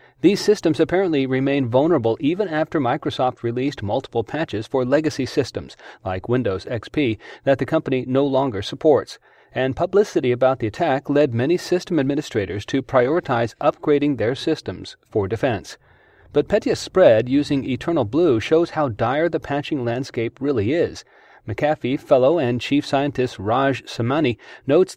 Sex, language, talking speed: male, English, 145 wpm